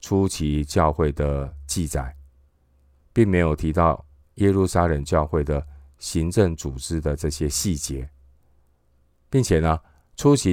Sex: male